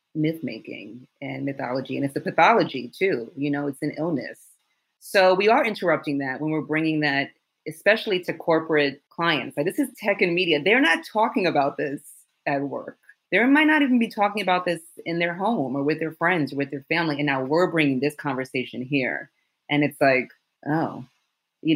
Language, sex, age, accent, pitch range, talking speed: English, female, 30-49, American, 140-180 Hz, 195 wpm